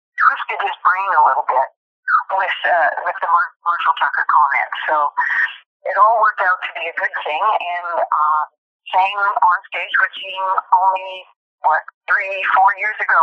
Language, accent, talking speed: English, American, 165 wpm